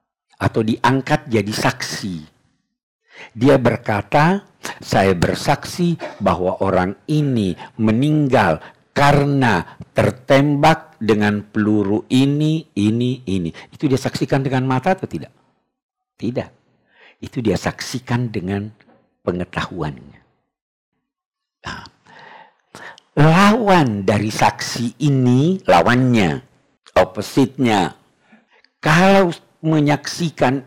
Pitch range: 95-150 Hz